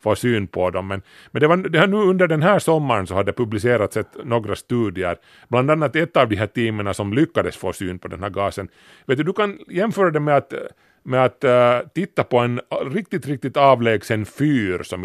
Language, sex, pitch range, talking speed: Swedish, male, 100-140 Hz, 185 wpm